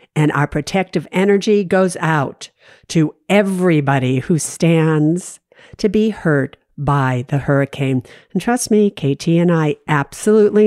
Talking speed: 130 wpm